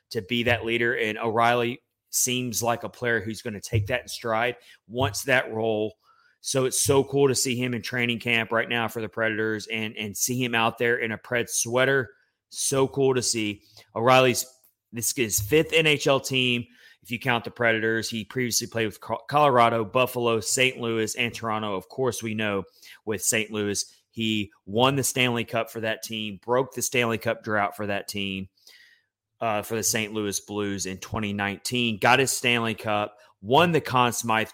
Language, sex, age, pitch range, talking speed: English, male, 30-49, 110-125 Hz, 190 wpm